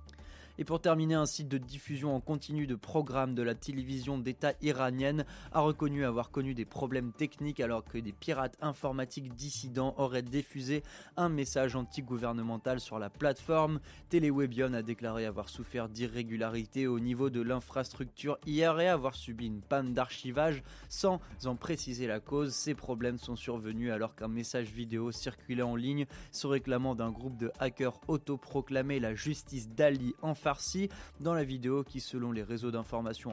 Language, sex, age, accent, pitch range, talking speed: French, male, 20-39, French, 120-145 Hz, 160 wpm